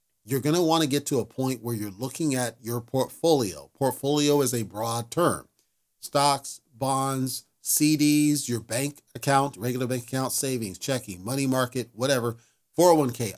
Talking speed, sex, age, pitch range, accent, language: 155 wpm, male, 40-59, 115-145 Hz, American, English